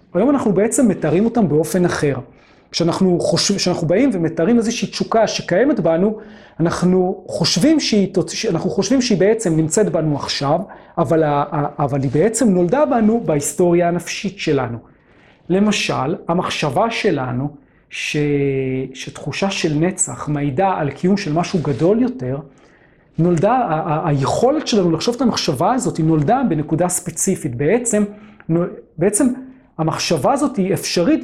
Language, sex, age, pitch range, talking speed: Hebrew, male, 40-59, 160-210 Hz, 135 wpm